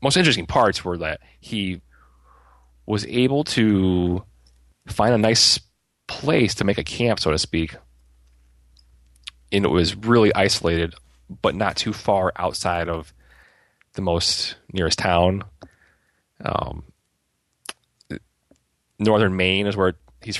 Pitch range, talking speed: 65-95 Hz, 120 wpm